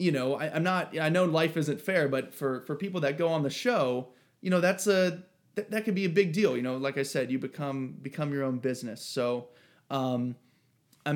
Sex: male